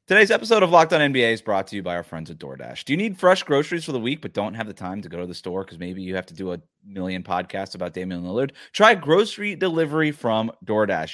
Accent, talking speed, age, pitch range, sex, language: American, 270 wpm, 30-49, 100-145 Hz, male, English